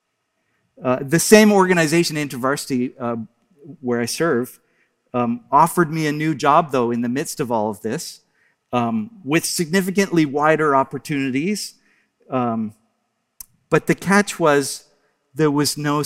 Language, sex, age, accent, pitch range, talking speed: English, male, 50-69, American, 130-175 Hz, 135 wpm